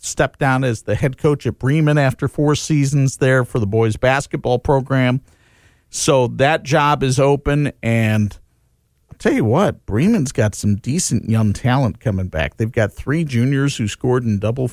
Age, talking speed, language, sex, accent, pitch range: 50-69, 175 wpm, English, male, American, 115-145 Hz